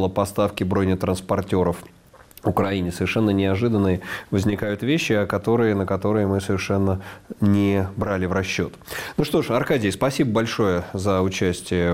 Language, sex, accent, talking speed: Russian, male, native, 130 wpm